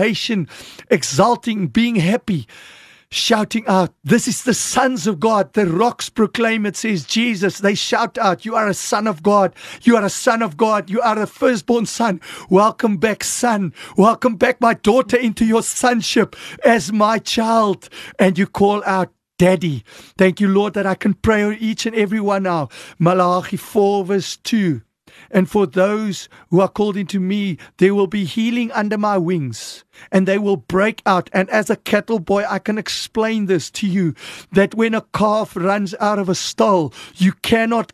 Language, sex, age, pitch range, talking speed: English, male, 50-69, 195-235 Hz, 180 wpm